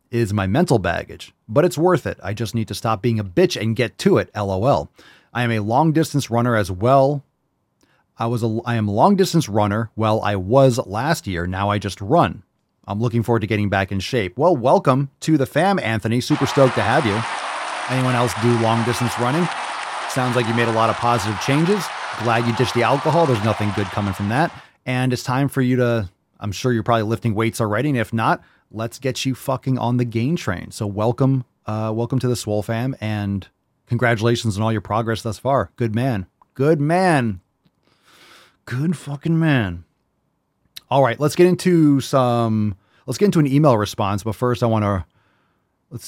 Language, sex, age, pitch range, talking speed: English, male, 30-49, 105-135 Hz, 200 wpm